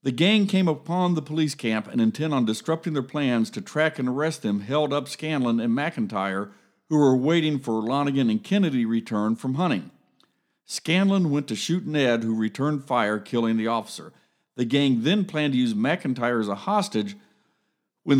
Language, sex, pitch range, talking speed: English, male, 115-160 Hz, 180 wpm